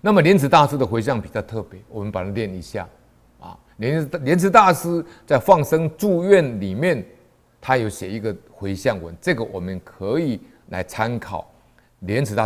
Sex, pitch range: male, 100-160 Hz